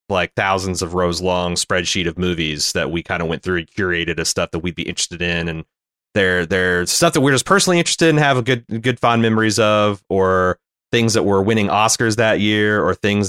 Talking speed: 225 wpm